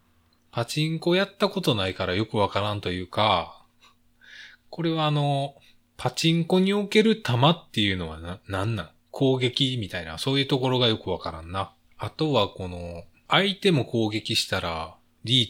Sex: male